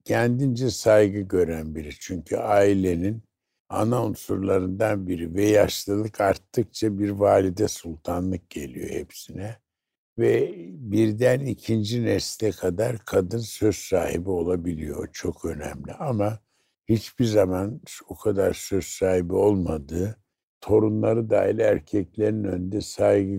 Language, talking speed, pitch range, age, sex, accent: Turkish, 105 wpm, 90-110 Hz, 60-79, male, native